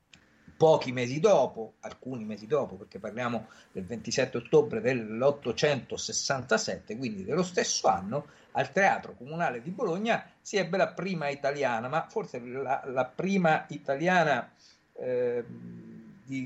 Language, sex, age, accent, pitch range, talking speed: Italian, male, 50-69, native, 115-165 Hz, 125 wpm